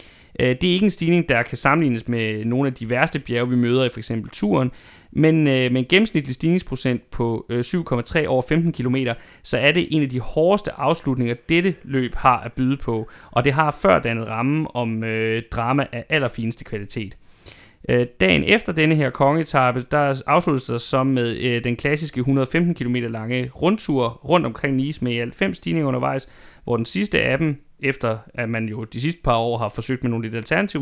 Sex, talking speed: male, 190 wpm